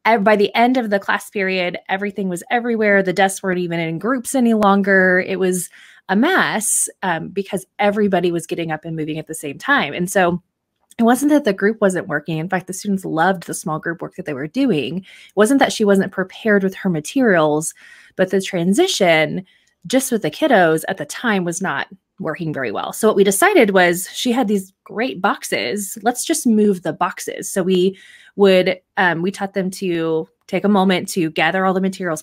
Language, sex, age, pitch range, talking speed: English, female, 20-39, 170-205 Hz, 205 wpm